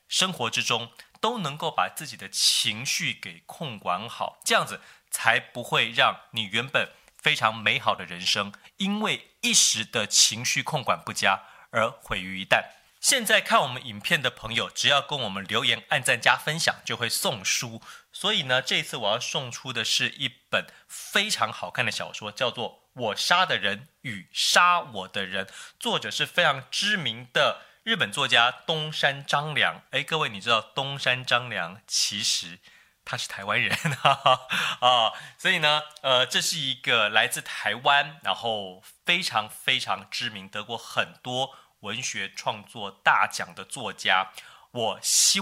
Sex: male